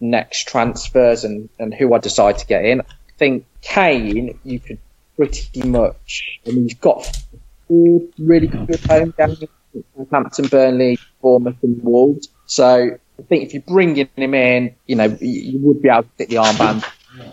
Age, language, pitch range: 20-39, English, 120-155 Hz